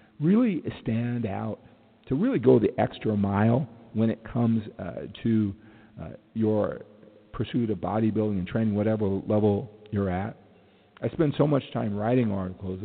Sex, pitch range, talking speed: male, 95-115 Hz, 150 wpm